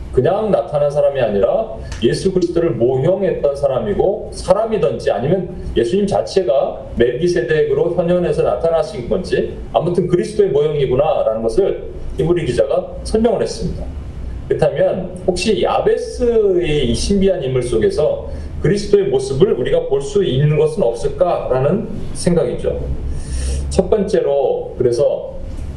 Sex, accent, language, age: male, native, Korean, 40-59